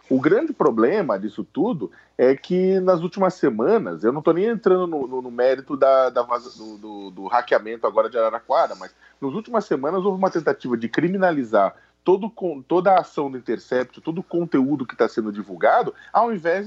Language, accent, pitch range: Portuguese, Brazilian, 130-210 Hz